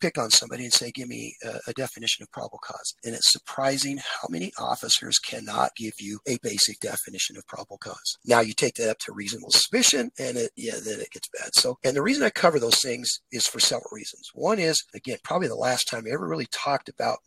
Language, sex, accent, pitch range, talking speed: English, male, American, 120-155 Hz, 235 wpm